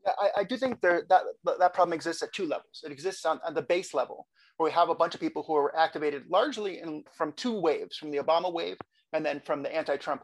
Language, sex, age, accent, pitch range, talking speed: English, male, 30-49, American, 150-205 Hz, 250 wpm